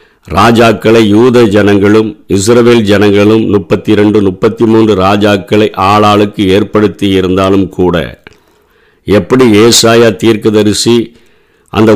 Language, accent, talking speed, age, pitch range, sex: Tamil, native, 90 wpm, 50-69, 100-120 Hz, male